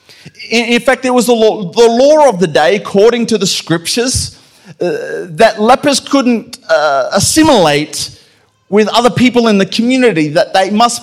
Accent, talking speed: Australian, 165 wpm